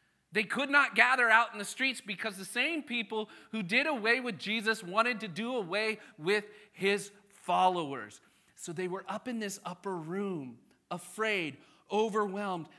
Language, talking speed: English, 160 wpm